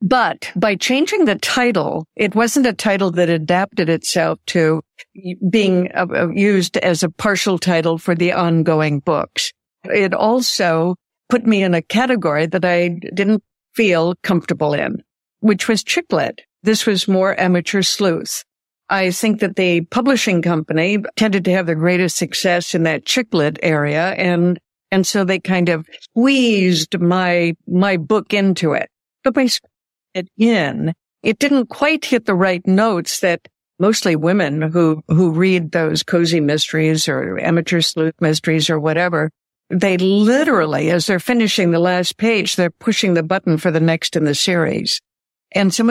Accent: American